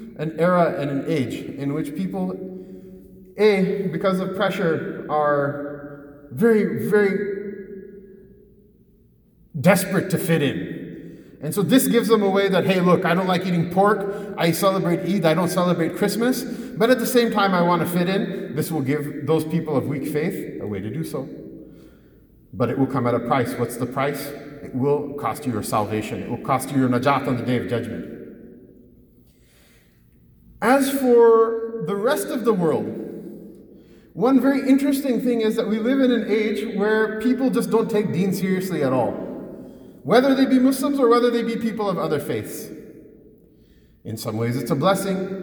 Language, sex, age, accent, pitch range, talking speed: English, male, 30-49, American, 145-205 Hz, 180 wpm